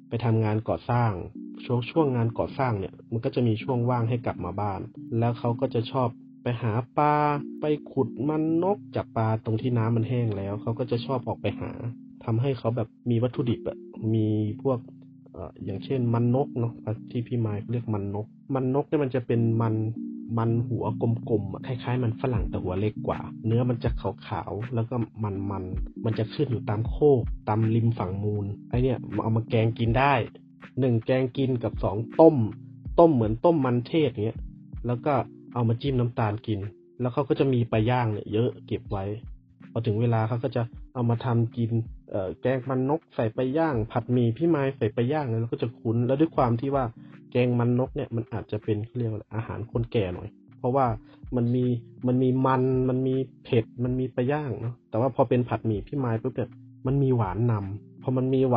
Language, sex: Thai, male